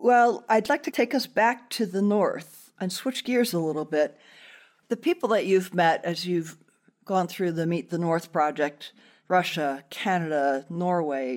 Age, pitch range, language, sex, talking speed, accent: 50-69, 155-200 Hz, English, female, 175 wpm, American